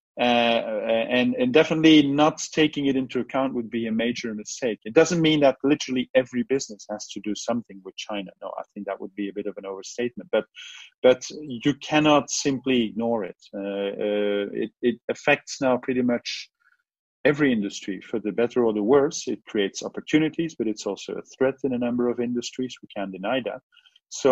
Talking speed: 195 wpm